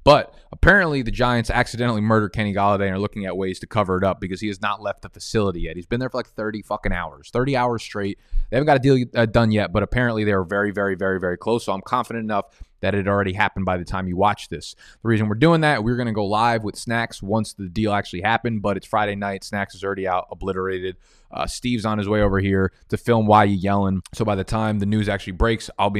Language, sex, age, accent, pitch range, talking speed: English, male, 20-39, American, 100-120 Hz, 265 wpm